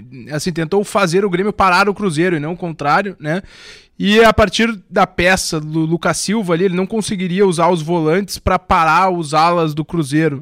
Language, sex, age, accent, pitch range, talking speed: Portuguese, male, 20-39, Brazilian, 165-200 Hz, 195 wpm